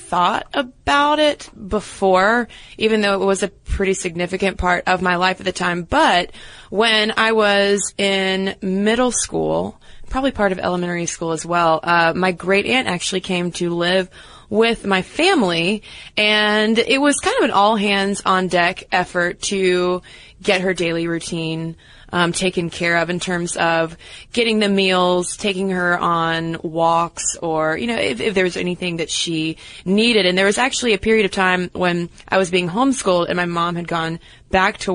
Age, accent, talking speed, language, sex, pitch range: 20-39, American, 175 wpm, English, female, 175-210 Hz